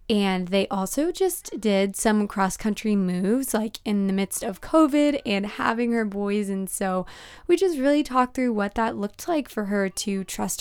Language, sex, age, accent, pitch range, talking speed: English, female, 20-39, American, 195-245 Hz, 185 wpm